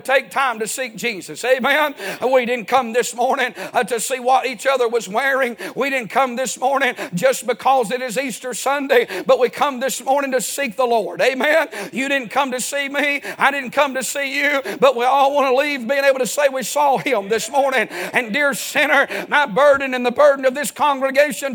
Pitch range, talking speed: 210-285 Hz, 215 wpm